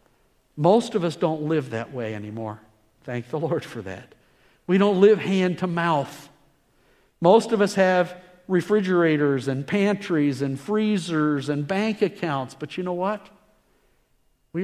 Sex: male